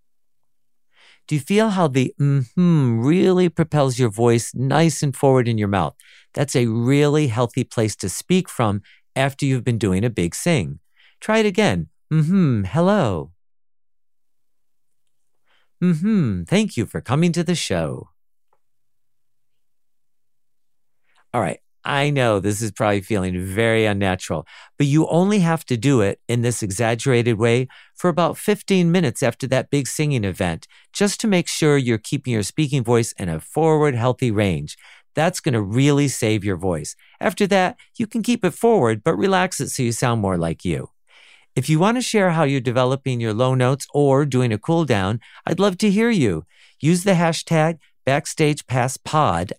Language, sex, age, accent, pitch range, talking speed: English, male, 50-69, American, 115-165 Hz, 165 wpm